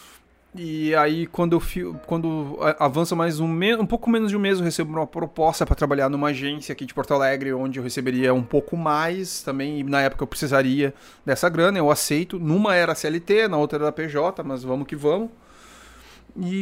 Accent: Brazilian